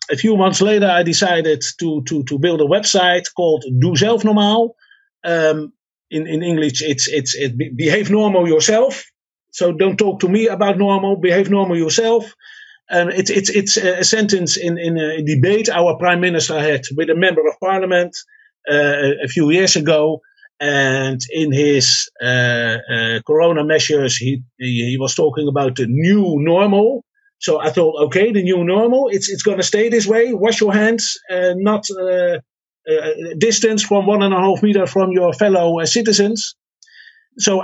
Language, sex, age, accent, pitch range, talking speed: English, male, 50-69, Dutch, 155-210 Hz, 175 wpm